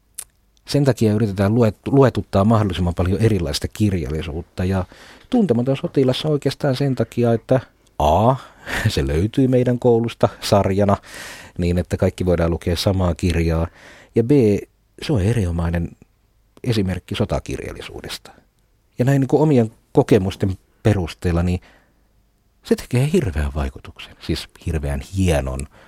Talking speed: 110 wpm